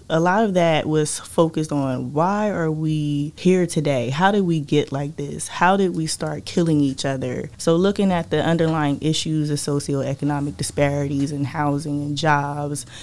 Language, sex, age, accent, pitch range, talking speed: English, female, 20-39, American, 140-155 Hz, 175 wpm